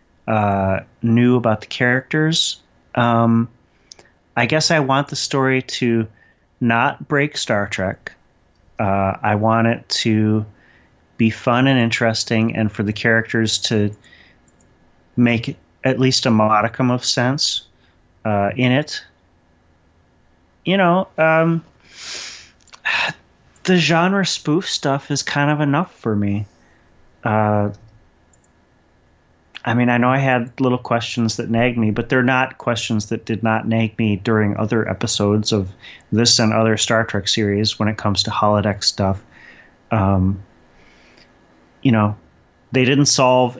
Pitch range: 105-125 Hz